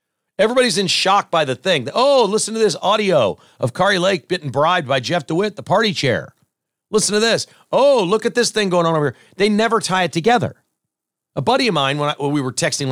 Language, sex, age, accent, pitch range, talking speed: English, male, 40-59, American, 145-205 Hz, 230 wpm